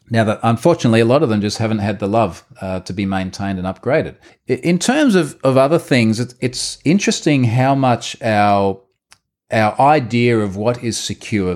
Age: 40-59